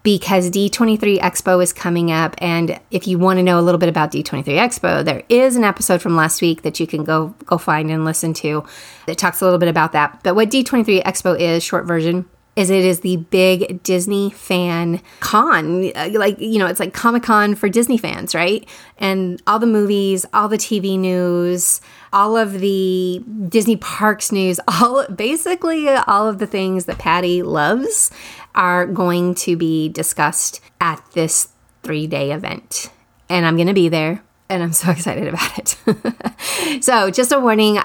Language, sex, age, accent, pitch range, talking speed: English, female, 30-49, American, 175-210 Hz, 180 wpm